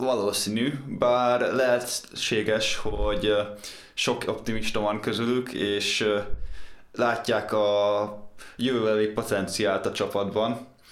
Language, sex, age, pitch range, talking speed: Hungarian, male, 20-39, 100-110 Hz, 80 wpm